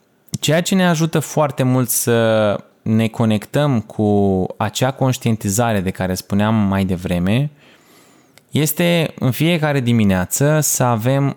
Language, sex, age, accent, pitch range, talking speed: Romanian, male, 20-39, native, 110-140 Hz, 120 wpm